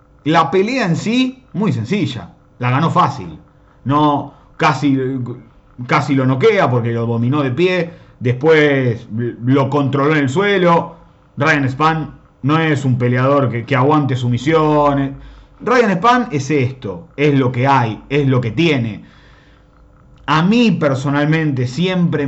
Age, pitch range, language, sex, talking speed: 30-49, 130-165 Hz, Spanish, male, 135 wpm